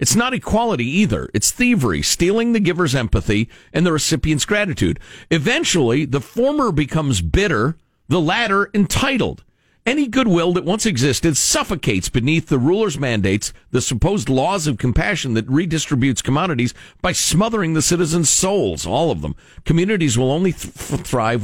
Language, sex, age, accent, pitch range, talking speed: English, male, 50-69, American, 105-160 Hz, 145 wpm